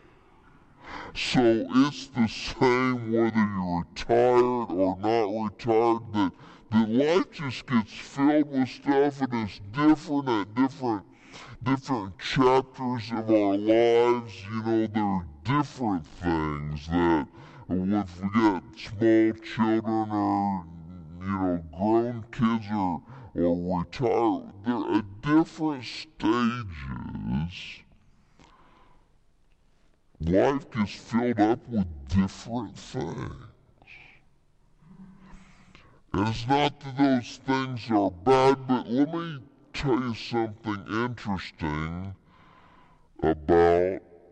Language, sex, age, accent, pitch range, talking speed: English, female, 60-79, American, 85-125 Hz, 100 wpm